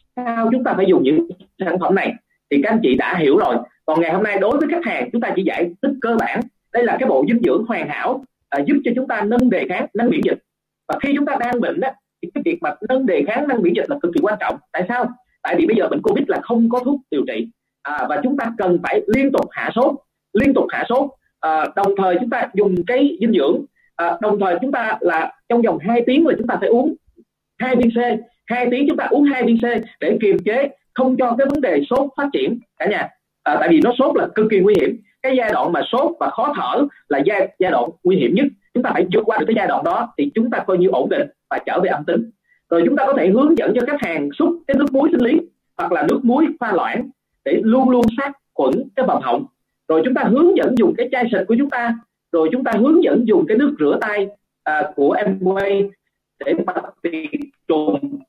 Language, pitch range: Vietnamese, 220-280 Hz